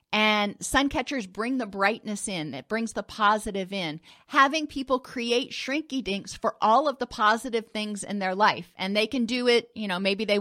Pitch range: 195-240 Hz